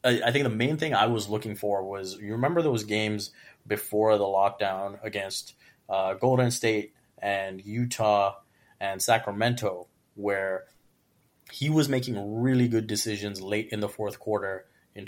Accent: American